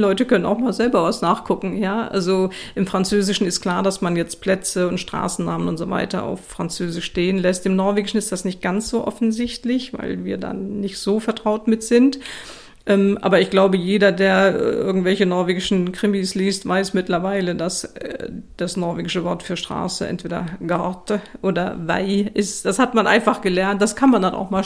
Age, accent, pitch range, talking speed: 50-69, German, 185-220 Hz, 185 wpm